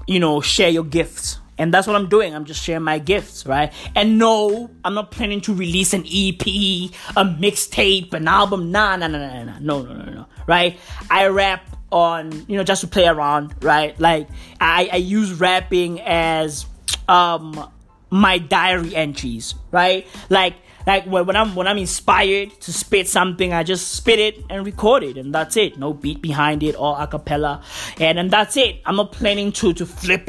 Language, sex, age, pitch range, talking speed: English, male, 20-39, 150-190 Hz, 205 wpm